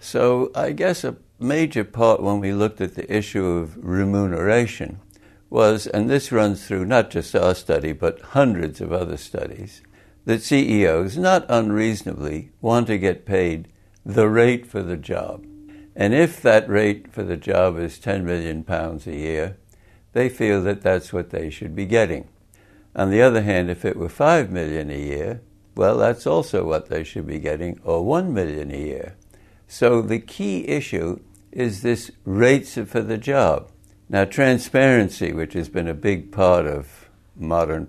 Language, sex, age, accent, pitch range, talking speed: English, male, 60-79, American, 90-110 Hz, 170 wpm